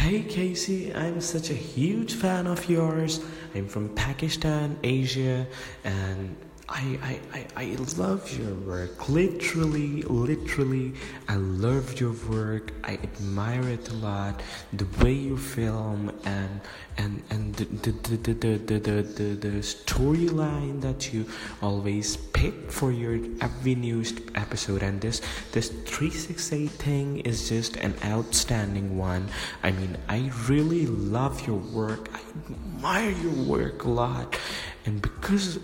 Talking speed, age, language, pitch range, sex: 135 wpm, 20-39, English, 105-140 Hz, male